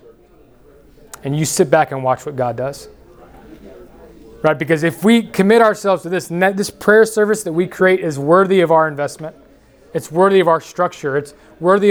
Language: English